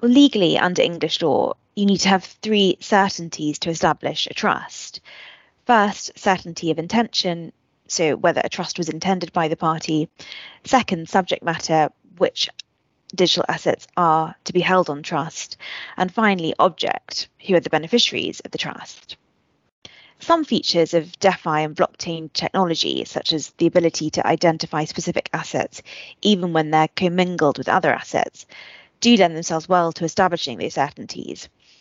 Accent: British